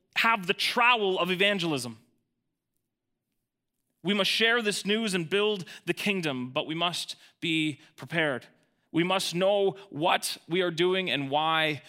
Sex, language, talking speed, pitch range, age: male, English, 140 wpm, 135-205 Hz, 30-49